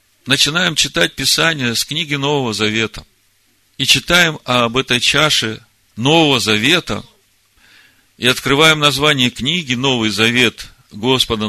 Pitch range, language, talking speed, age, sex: 110-155 Hz, Russian, 110 wpm, 50-69, male